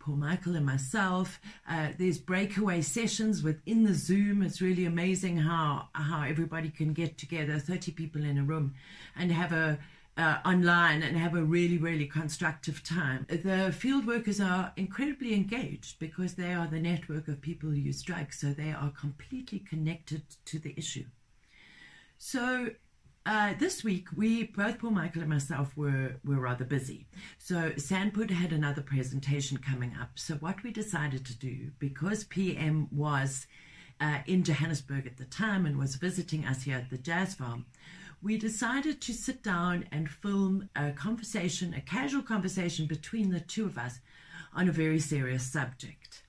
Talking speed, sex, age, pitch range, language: 165 wpm, female, 40-59, 145-190 Hz, English